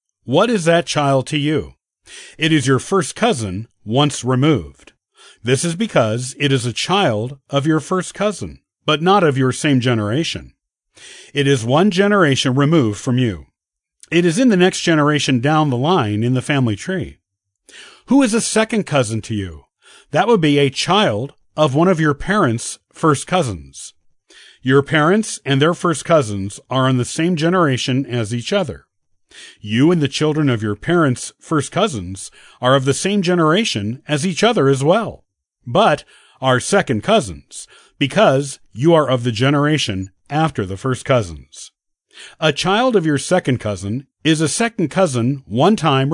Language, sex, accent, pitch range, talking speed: English, male, American, 120-170 Hz, 165 wpm